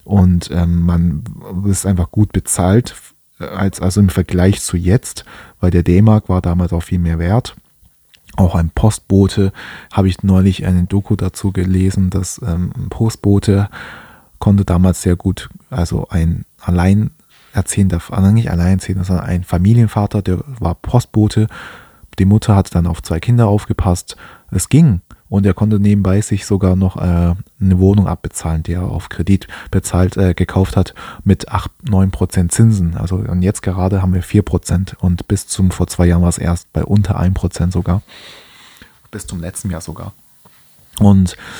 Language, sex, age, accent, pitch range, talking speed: German, male, 20-39, German, 90-105 Hz, 165 wpm